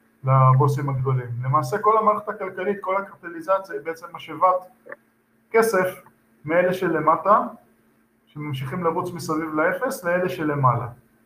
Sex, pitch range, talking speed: male, 130-190 Hz, 100 wpm